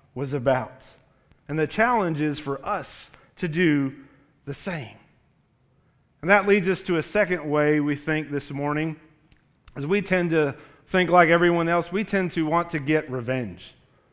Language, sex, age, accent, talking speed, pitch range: English, male, 40-59, American, 165 wpm, 150-180 Hz